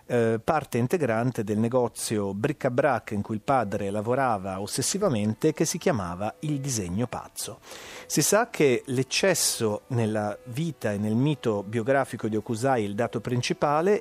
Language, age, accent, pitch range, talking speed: Italian, 40-59, native, 110-150 Hz, 145 wpm